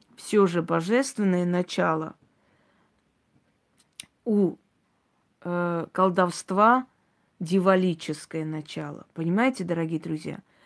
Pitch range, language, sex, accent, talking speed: 180-225 Hz, Russian, female, native, 60 wpm